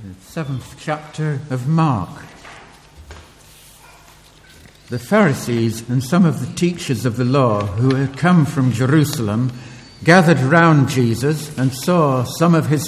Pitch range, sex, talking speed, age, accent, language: 125-160 Hz, male, 125 wpm, 60-79, British, English